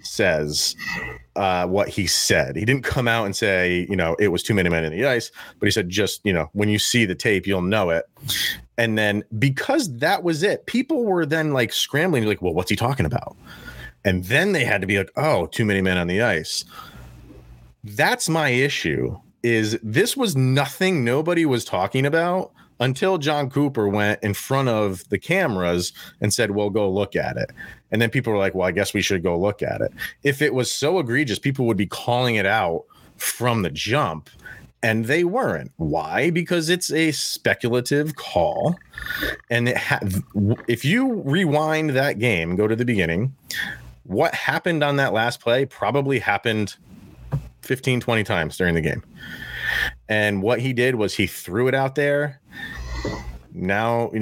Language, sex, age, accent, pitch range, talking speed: English, male, 30-49, American, 100-140 Hz, 185 wpm